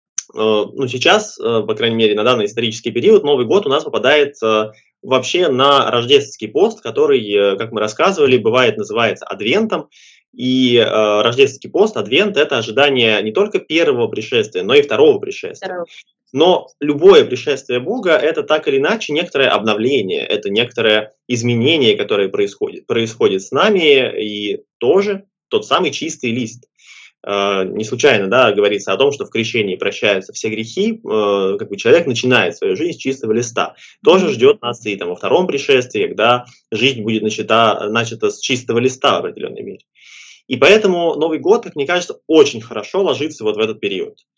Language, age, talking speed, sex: Russian, 20-39, 160 wpm, male